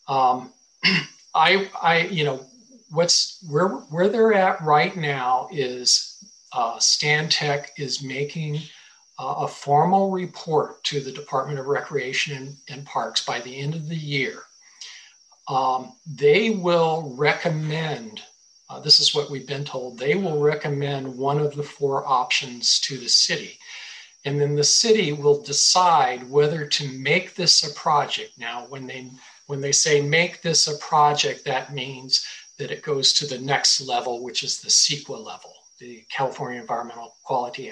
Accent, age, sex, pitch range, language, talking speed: American, 50-69, male, 130-155 Hz, English, 155 wpm